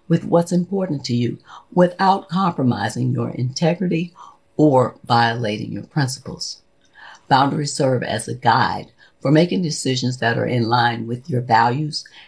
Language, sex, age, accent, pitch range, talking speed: English, female, 50-69, American, 120-170 Hz, 135 wpm